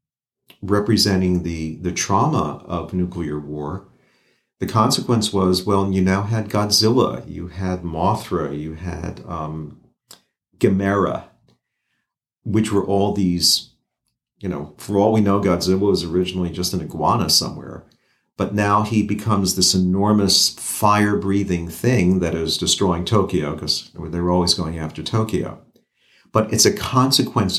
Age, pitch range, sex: 50-69, 90-105 Hz, male